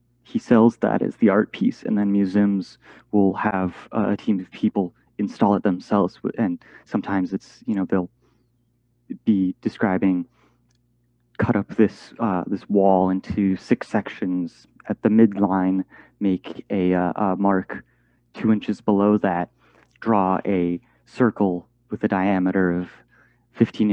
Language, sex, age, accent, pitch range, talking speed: English, male, 30-49, American, 95-120 Hz, 140 wpm